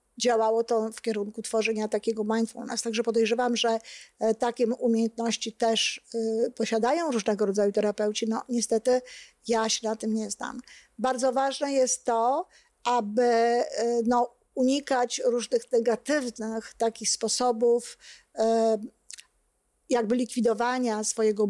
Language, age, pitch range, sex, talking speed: Polish, 50-69, 225-250 Hz, female, 105 wpm